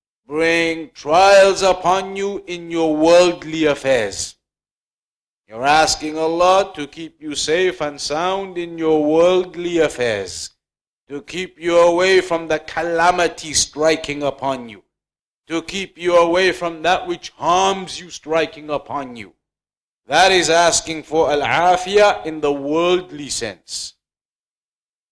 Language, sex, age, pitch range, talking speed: English, male, 50-69, 155-180 Hz, 125 wpm